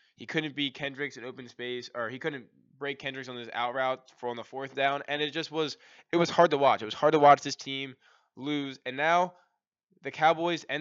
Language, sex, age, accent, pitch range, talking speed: English, male, 10-29, American, 120-150 Hz, 235 wpm